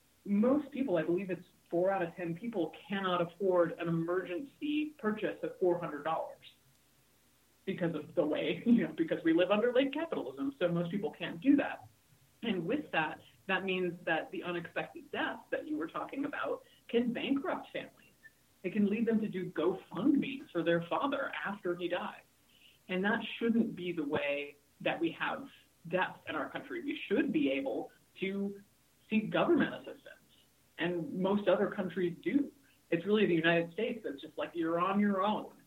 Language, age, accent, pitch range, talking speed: English, 30-49, American, 165-215 Hz, 175 wpm